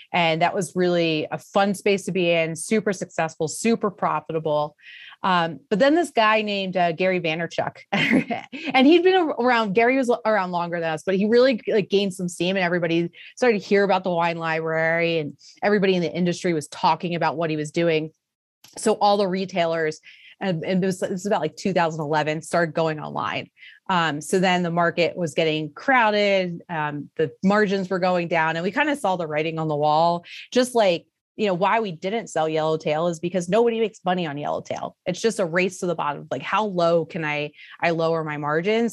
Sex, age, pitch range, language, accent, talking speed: female, 30-49, 160-195 Hz, English, American, 200 wpm